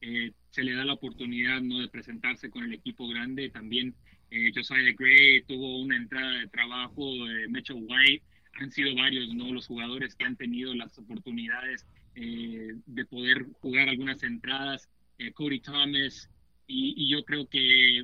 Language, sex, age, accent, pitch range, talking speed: Spanish, male, 30-49, Mexican, 125-140 Hz, 170 wpm